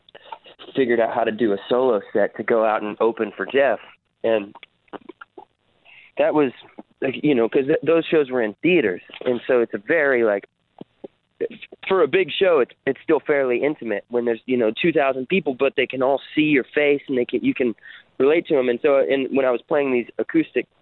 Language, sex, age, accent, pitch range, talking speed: English, male, 30-49, American, 110-140 Hz, 210 wpm